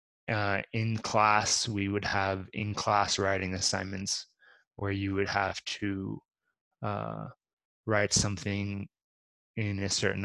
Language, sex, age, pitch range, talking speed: English, male, 20-39, 100-120 Hz, 115 wpm